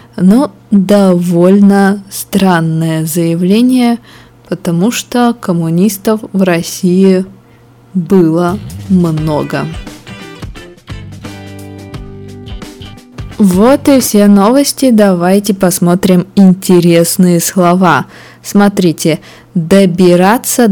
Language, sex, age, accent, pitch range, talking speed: Russian, female, 20-39, native, 165-205 Hz, 60 wpm